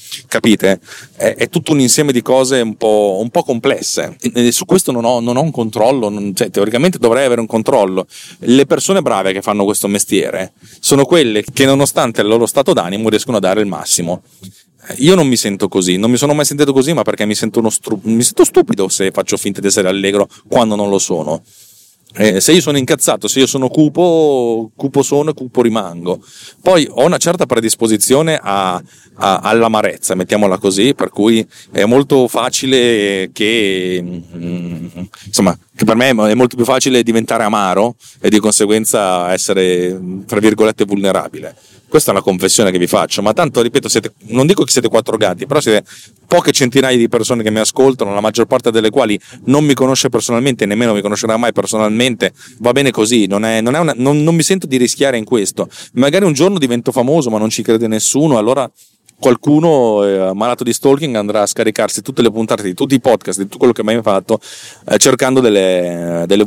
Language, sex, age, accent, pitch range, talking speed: Italian, male, 40-59, native, 100-130 Hz, 190 wpm